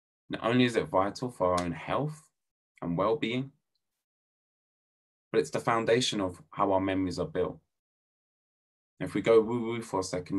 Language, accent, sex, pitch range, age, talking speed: English, British, male, 85-120 Hz, 20-39, 160 wpm